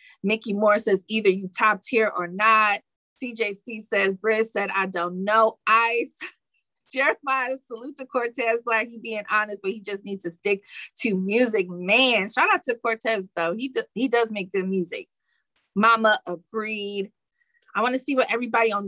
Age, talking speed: 20-39, 175 wpm